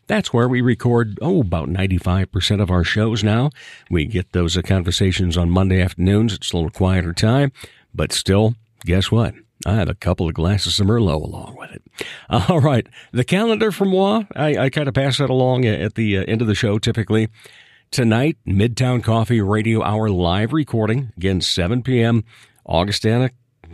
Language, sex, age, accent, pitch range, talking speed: English, male, 50-69, American, 95-125 Hz, 170 wpm